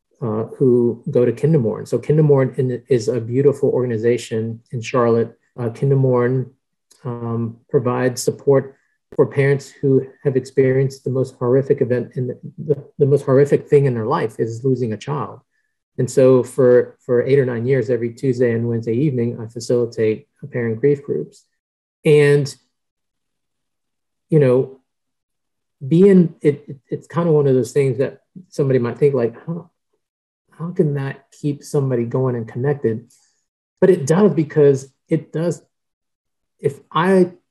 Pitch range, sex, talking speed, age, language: 120-145 Hz, male, 145 wpm, 40-59, English